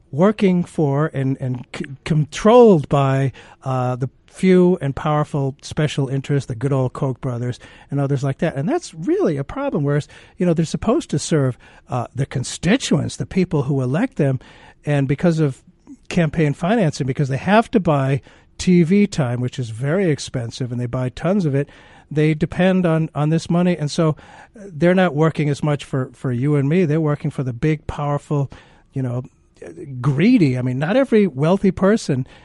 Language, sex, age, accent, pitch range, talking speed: English, male, 50-69, American, 130-170 Hz, 180 wpm